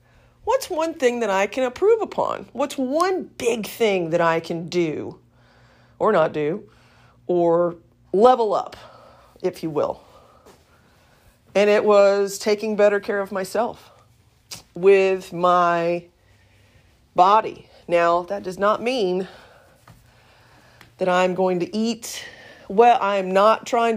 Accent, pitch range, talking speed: American, 150-210 Hz, 125 wpm